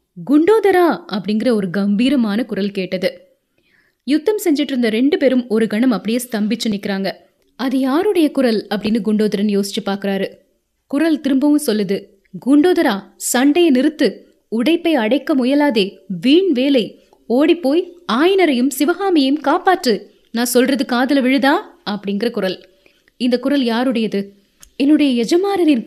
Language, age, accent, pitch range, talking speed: Tamil, 20-39, native, 210-285 Hz, 110 wpm